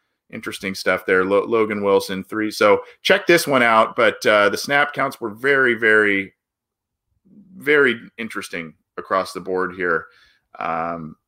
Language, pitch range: English, 95-125 Hz